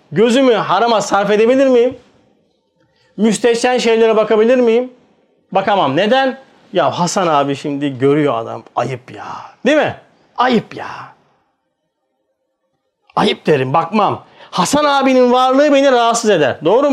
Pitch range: 150-250 Hz